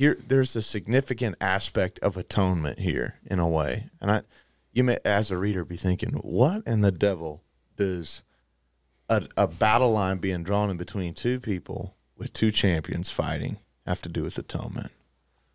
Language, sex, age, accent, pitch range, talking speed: English, male, 30-49, American, 85-120 Hz, 170 wpm